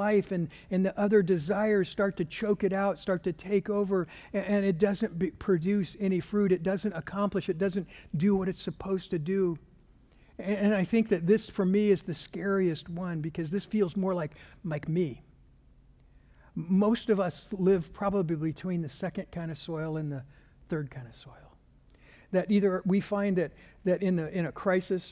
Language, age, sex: English, 60-79, male